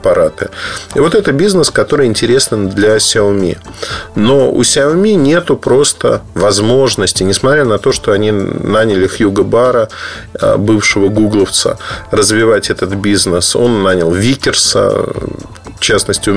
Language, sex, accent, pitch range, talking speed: Russian, male, native, 100-130 Hz, 120 wpm